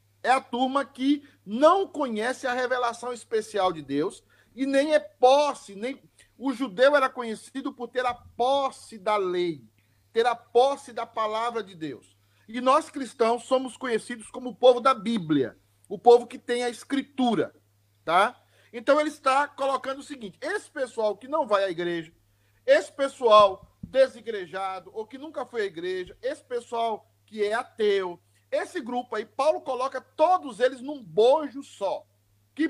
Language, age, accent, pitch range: Portuguese, 40-59, Brazilian, 205-275 Hz